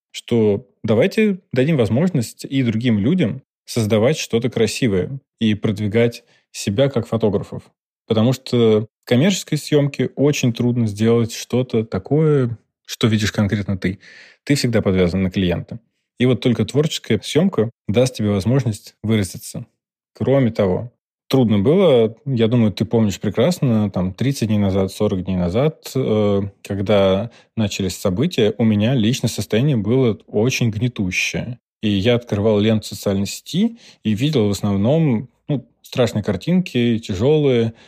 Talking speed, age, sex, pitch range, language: 130 wpm, 20-39, male, 105-130 Hz, Russian